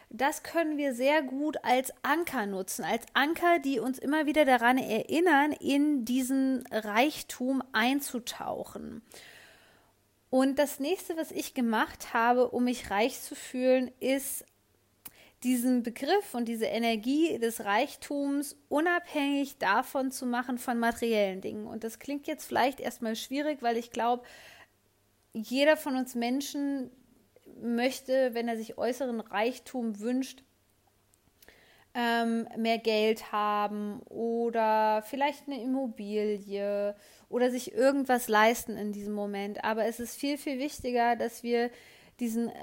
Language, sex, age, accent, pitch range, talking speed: German, female, 20-39, German, 225-275 Hz, 130 wpm